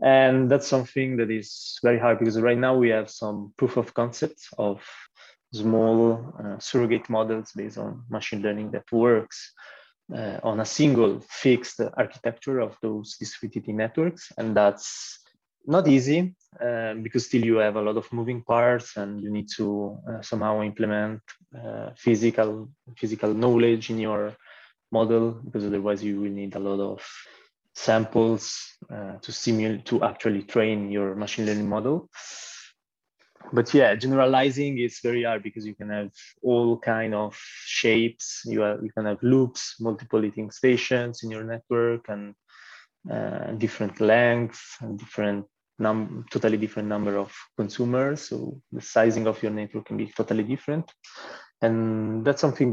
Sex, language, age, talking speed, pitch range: male, English, 20-39, 150 wpm, 105-120 Hz